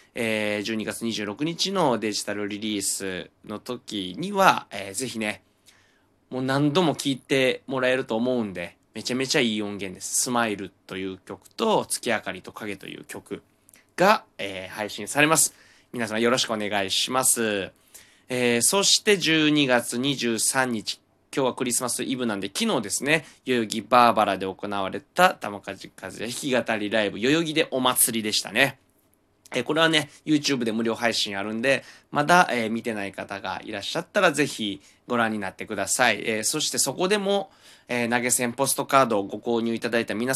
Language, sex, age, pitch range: Japanese, male, 20-39, 100-130 Hz